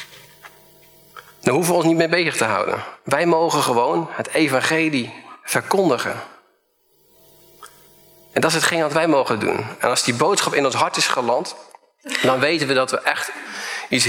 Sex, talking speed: male, 165 wpm